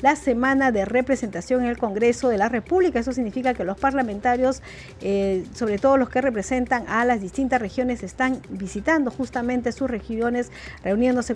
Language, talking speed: Spanish, 165 wpm